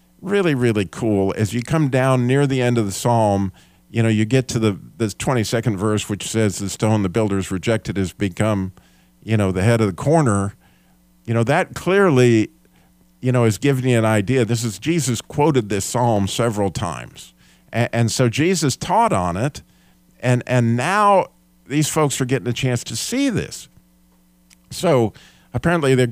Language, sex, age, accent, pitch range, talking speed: English, male, 50-69, American, 100-135 Hz, 180 wpm